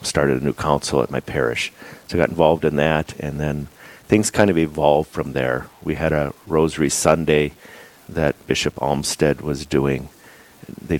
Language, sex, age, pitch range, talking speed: English, male, 50-69, 70-80 Hz, 175 wpm